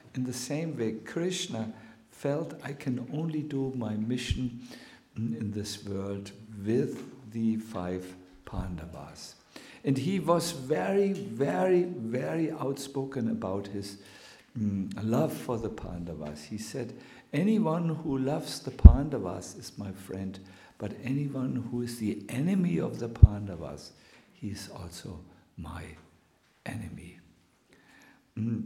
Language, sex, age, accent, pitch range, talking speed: English, male, 60-79, German, 105-140 Hz, 120 wpm